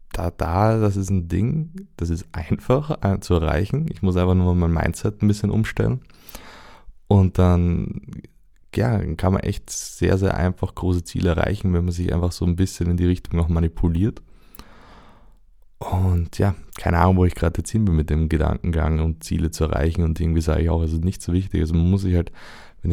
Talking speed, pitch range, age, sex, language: 205 wpm, 85-95 Hz, 20-39, male, German